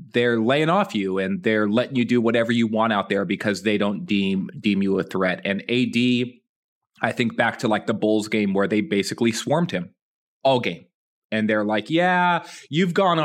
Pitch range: 105-130 Hz